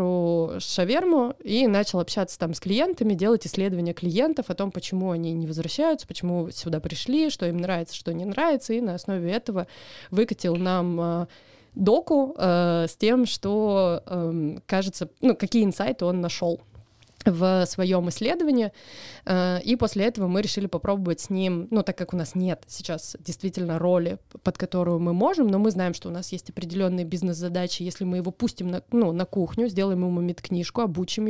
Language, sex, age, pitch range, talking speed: Russian, female, 20-39, 175-205 Hz, 170 wpm